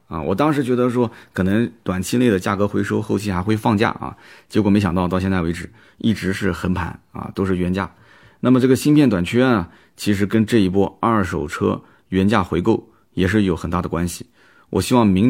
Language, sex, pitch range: Chinese, male, 95-130 Hz